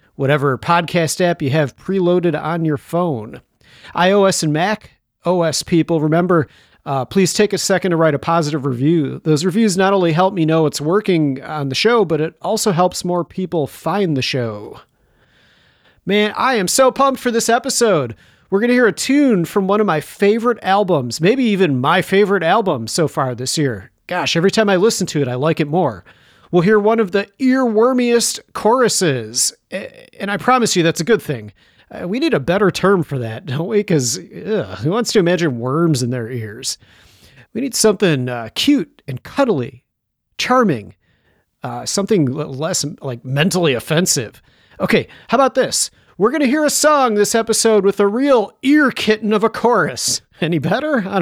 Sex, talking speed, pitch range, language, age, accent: male, 185 wpm, 140-210 Hz, English, 40-59, American